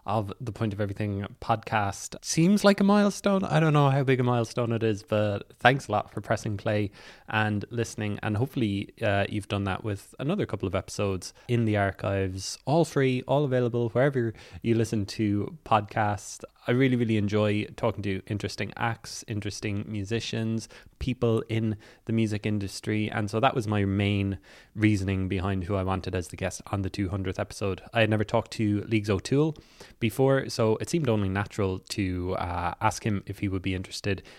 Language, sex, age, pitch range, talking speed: English, male, 20-39, 100-120 Hz, 185 wpm